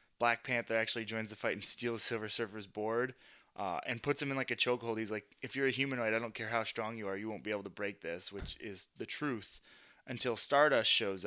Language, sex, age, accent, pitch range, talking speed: English, male, 20-39, American, 100-120 Hz, 245 wpm